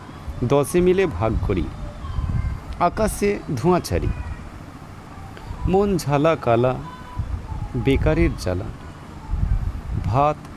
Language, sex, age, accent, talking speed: Bengali, male, 50-69, native, 70 wpm